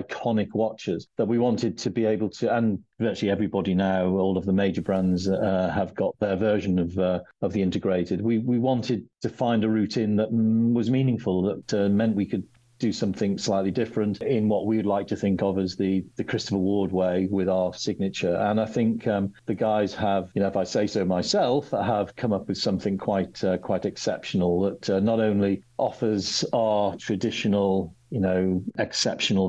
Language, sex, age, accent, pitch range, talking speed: English, male, 50-69, British, 95-110 Hz, 200 wpm